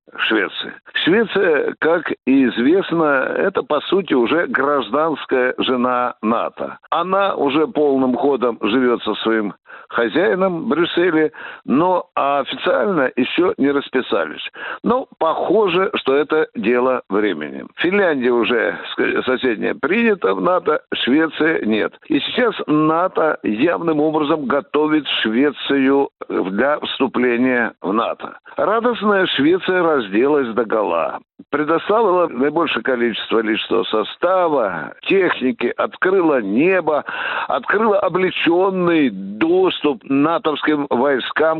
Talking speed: 100 wpm